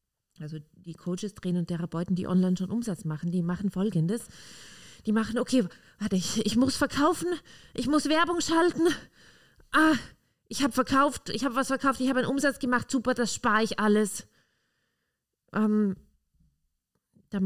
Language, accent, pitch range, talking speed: German, German, 170-240 Hz, 160 wpm